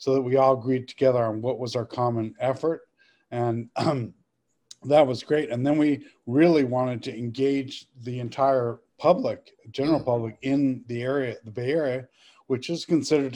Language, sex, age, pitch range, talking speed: English, male, 50-69, 120-140 Hz, 170 wpm